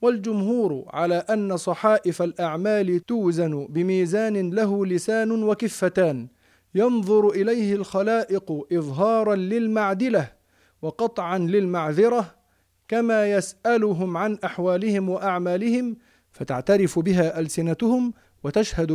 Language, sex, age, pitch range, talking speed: Arabic, male, 40-59, 170-220 Hz, 80 wpm